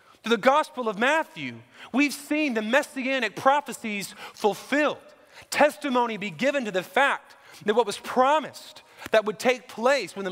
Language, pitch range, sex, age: English, 170-260 Hz, male, 30-49